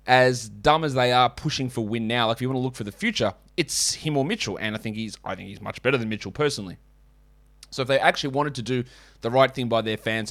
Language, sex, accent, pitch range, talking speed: English, male, Australian, 110-145 Hz, 275 wpm